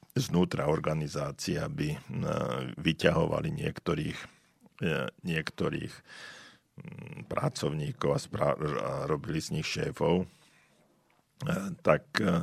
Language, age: Slovak, 50-69